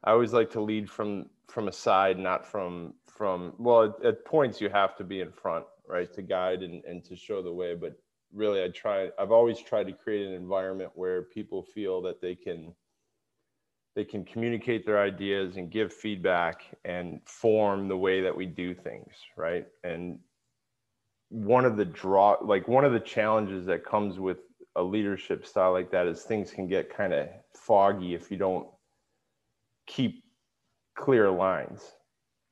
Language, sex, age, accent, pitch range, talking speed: English, male, 20-39, American, 90-110 Hz, 175 wpm